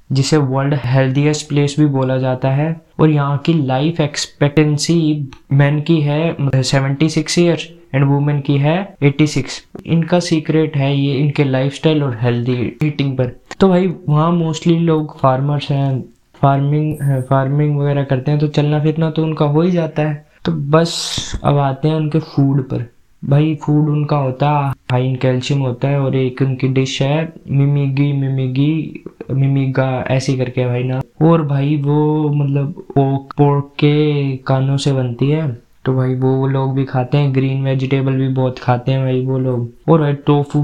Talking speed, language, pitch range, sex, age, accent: 150 wpm, Hindi, 130-150 Hz, male, 20-39, native